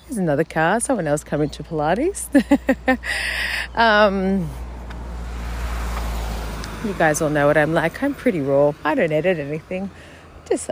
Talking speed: 135 wpm